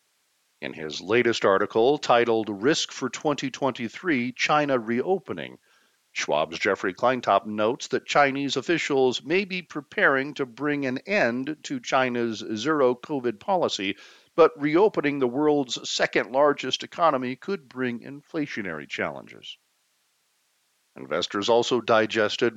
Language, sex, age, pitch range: English, male, 50-69, 105-140 Hz